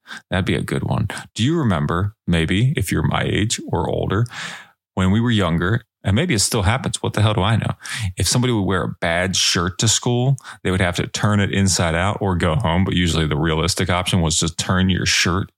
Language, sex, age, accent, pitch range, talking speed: English, male, 20-39, American, 85-105 Hz, 230 wpm